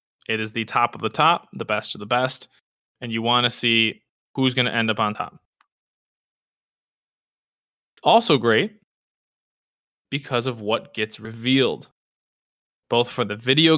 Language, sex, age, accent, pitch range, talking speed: English, male, 20-39, American, 115-140 Hz, 155 wpm